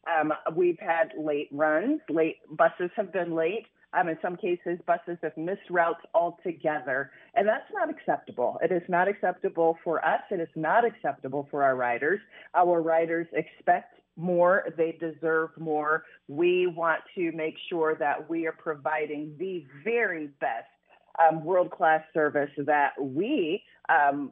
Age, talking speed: 40-59, 150 wpm